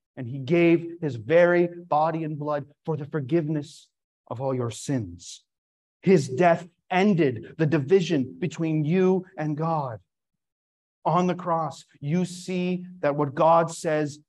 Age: 40-59